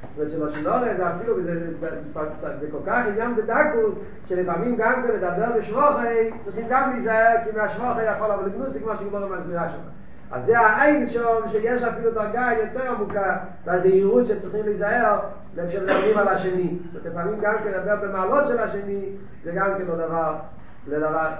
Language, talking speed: Hebrew, 170 wpm